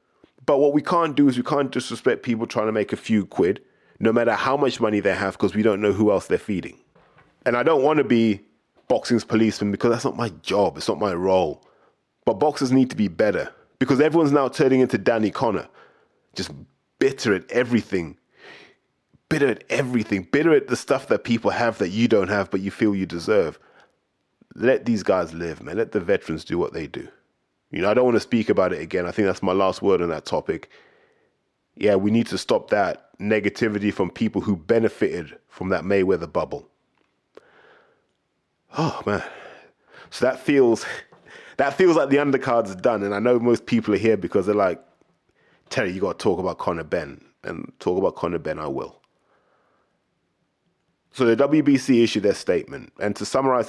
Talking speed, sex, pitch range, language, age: 195 wpm, male, 105-140 Hz, English, 20-39